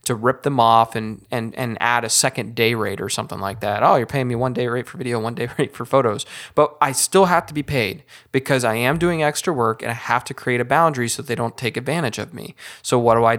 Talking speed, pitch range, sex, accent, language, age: 275 wpm, 115-155 Hz, male, American, English, 20-39